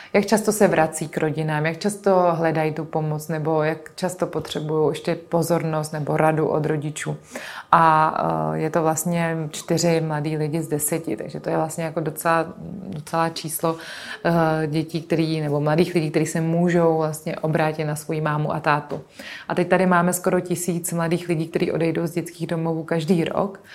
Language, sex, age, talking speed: Czech, female, 30-49, 170 wpm